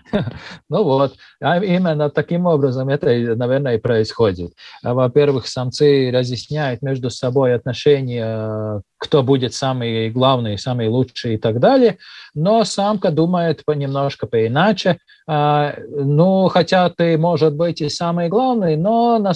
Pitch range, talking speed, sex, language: 125-175 Hz, 125 wpm, male, Russian